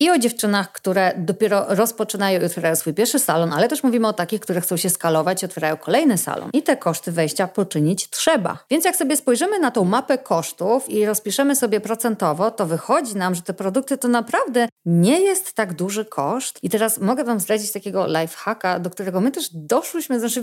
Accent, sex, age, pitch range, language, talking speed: native, female, 30-49, 190-255 Hz, Polish, 200 wpm